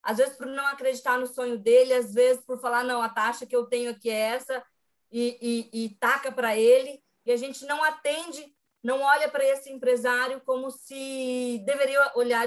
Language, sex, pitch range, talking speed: Portuguese, female, 230-270 Hz, 195 wpm